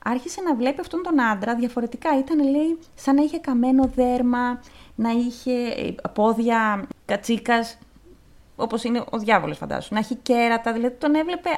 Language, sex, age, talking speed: Greek, female, 30-49, 150 wpm